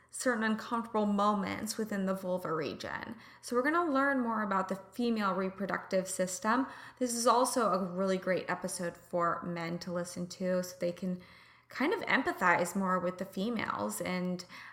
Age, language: 20-39, English